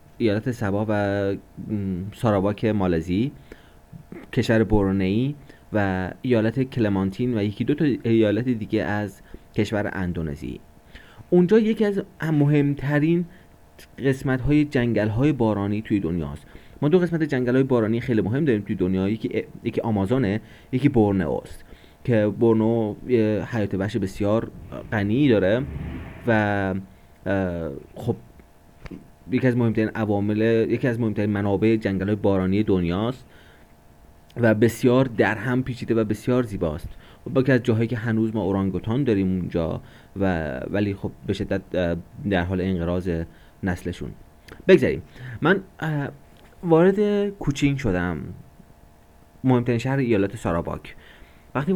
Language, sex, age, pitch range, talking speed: Persian, male, 30-49, 95-125 Hz, 120 wpm